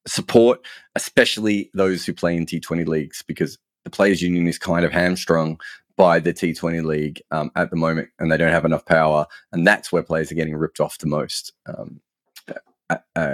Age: 30-49